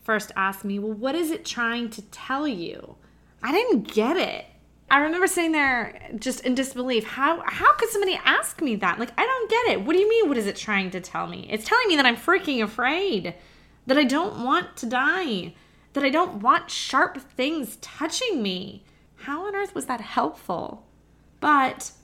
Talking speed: 200 wpm